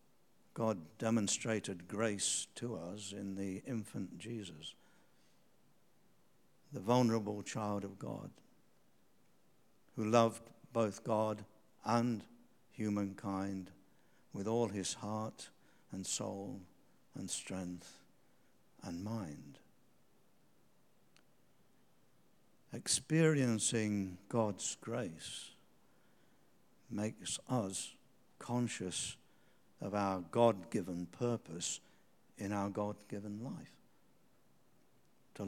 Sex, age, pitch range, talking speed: male, 60-79, 95-115 Hz, 75 wpm